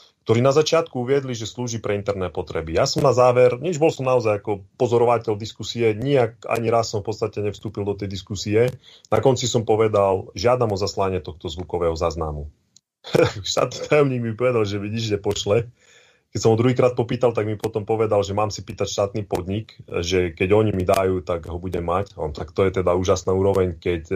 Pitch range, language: 95-120 Hz, Slovak